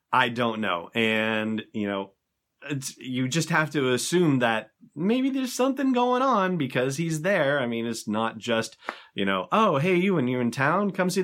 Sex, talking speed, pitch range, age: male, 190 wpm, 105-150 Hz, 30-49